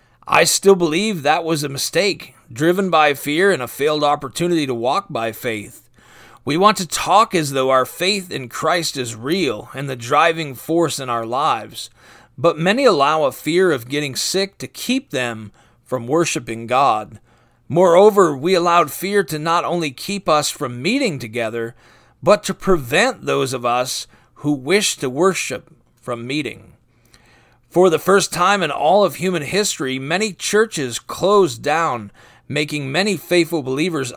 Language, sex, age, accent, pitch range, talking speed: English, male, 40-59, American, 125-180 Hz, 160 wpm